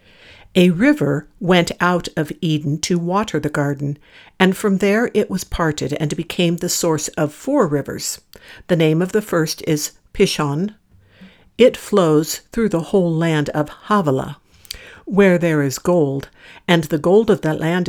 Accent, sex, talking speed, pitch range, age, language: American, female, 160 wpm, 155-200 Hz, 60-79, English